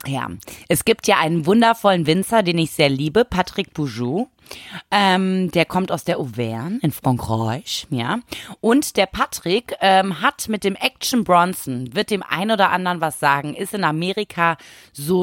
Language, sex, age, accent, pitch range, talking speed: German, female, 30-49, German, 150-195 Hz, 165 wpm